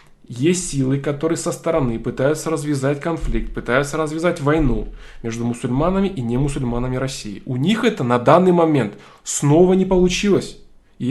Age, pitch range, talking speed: 20-39, 130-175 Hz, 145 wpm